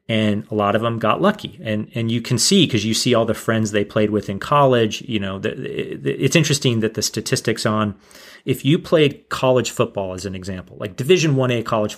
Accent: American